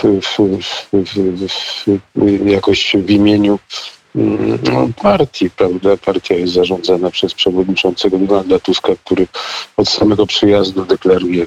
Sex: male